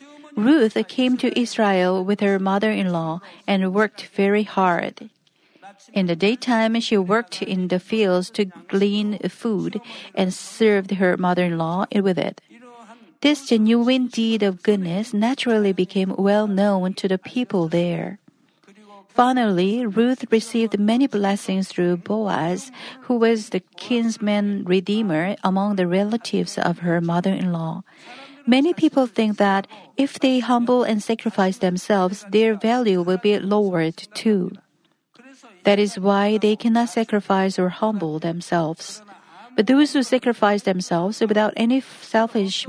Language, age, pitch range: Korean, 50-69, 190-230 Hz